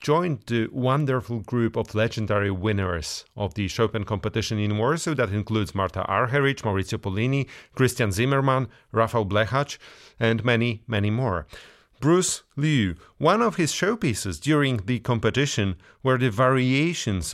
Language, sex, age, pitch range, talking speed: English, male, 30-49, 105-135 Hz, 135 wpm